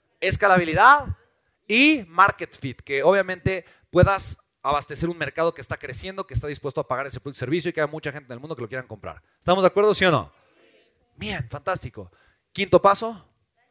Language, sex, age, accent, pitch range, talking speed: Spanish, male, 30-49, Mexican, 120-180 Hz, 185 wpm